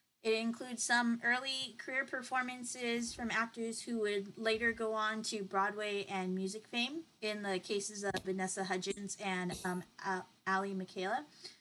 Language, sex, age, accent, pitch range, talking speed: English, female, 30-49, American, 195-230 Hz, 145 wpm